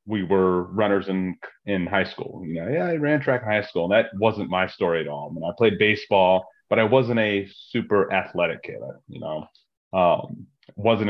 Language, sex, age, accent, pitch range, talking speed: English, male, 30-49, American, 95-115 Hz, 220 wpm